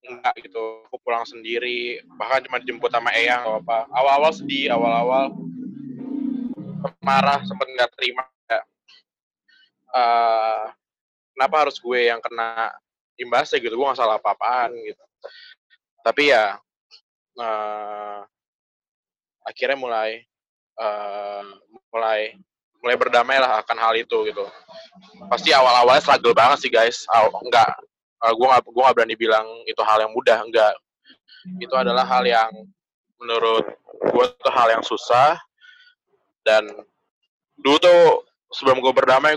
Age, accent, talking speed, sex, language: 20-39, native, 120 wpm, male, Indonesian